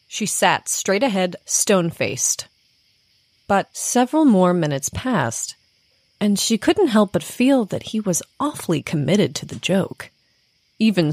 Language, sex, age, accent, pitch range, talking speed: English, female, 30-49, American, 160-225 Hz, 135 wpm